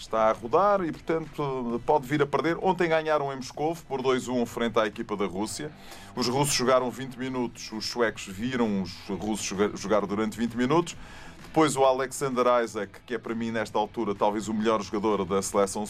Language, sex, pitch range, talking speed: Portuguese, male, 105-130 Hz, 190 wpm